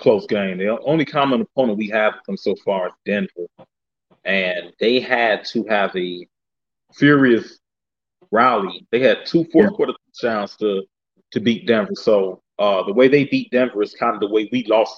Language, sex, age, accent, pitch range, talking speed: English, male, 30-49, American, 110-140 Hz, 180 wpm